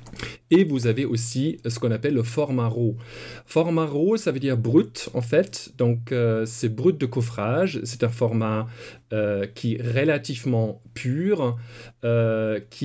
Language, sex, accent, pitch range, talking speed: French, male, French, 115-135 Hz, 160 wpm